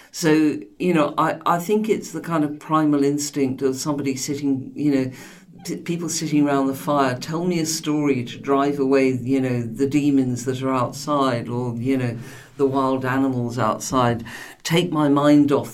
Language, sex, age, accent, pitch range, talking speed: English, female, 50-69, British, 135-155 Hz, 185 wpm